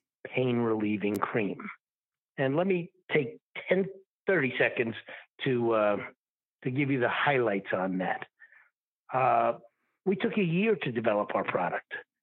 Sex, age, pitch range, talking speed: male, 50-69, 120-165 Hz, 135 wpm